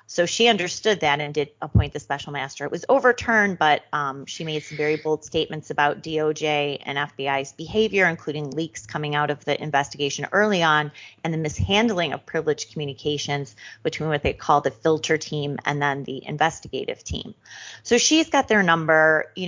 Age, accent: 30-49, American